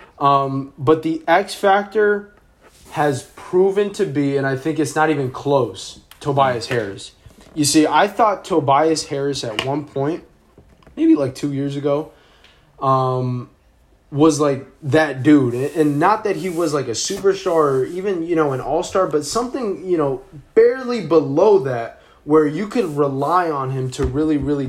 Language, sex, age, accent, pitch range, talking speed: English, male, 20-39, American, 135-175 Hz, 165 wpm